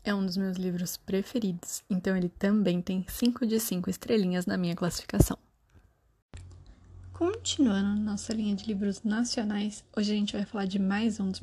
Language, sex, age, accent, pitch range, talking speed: Portuguese, female, 20-39, Brazilian, 185-225 Hz, 170 wpm